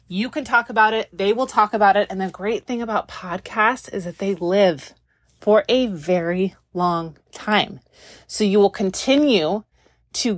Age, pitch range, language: 30-49, 180-220 Hz, English